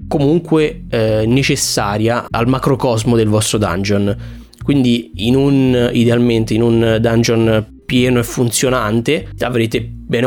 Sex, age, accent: male, 20-39, native